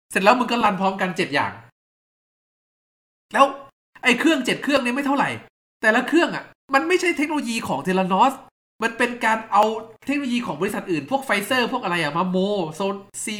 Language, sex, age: Thai, male, 20-39